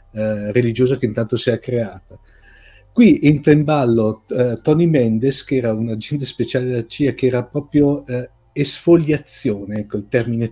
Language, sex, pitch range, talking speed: Italian, male, 110-140 Hz, 160 wpm